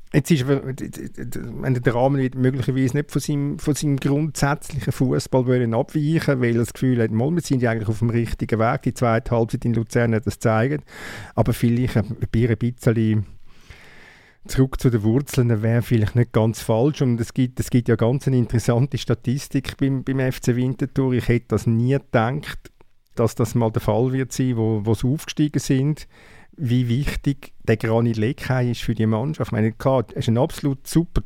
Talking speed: 185 wpm